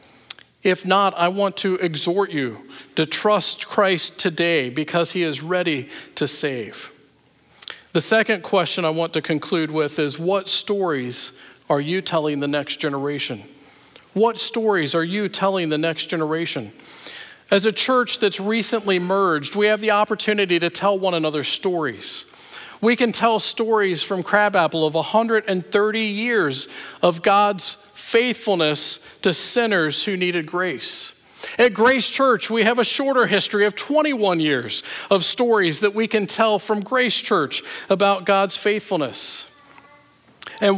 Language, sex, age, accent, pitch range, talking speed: English, male, 50-69, American, 170-215 Hz, 145 wpm